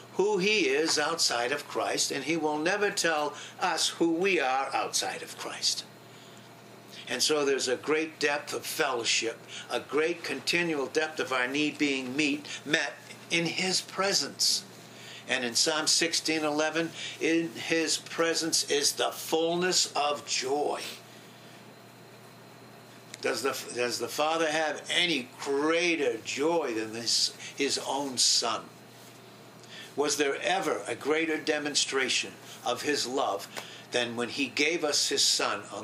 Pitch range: 130-165 Hz